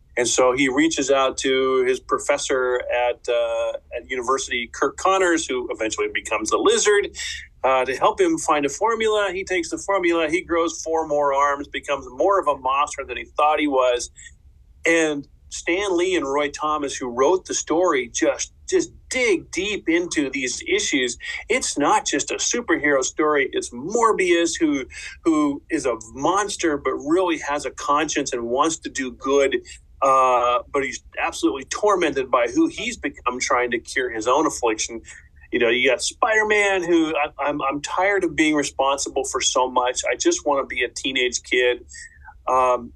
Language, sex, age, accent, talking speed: English, male, 40-59, American, 175 wpm